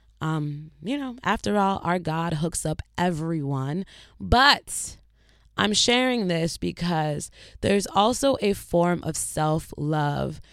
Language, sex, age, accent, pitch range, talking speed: English, female, 20-39, American, 150-190 Hz, 120 wpm